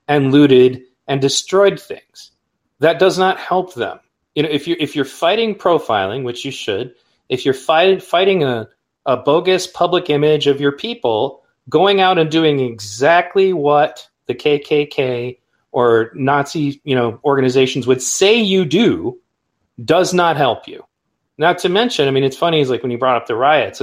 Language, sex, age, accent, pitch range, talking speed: English, male, 30-49, American, 130-185 Hz, 175 wpm